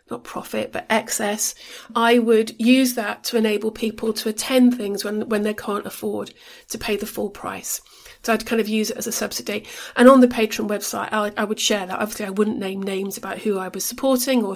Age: 40-59